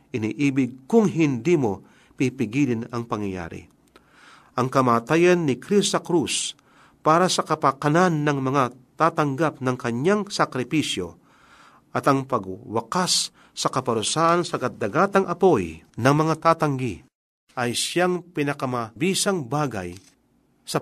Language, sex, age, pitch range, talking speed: Filipino, male, 40-59, 125-170 Hz, 105 wpm